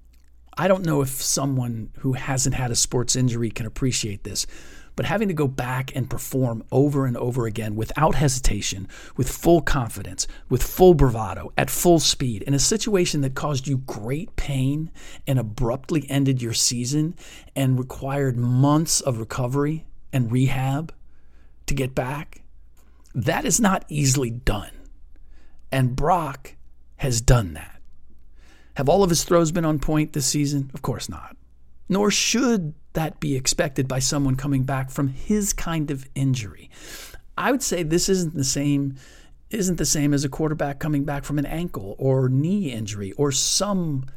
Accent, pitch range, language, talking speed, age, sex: American, 110-145 Hz, English, 160 wpm, 40-59, male